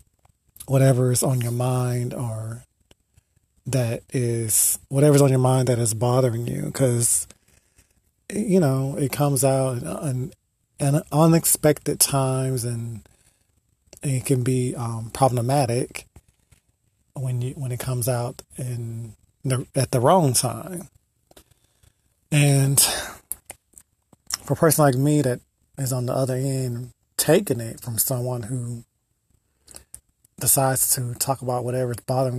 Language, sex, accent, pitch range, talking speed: English, male, American, 115-135 Hz, 130 wpm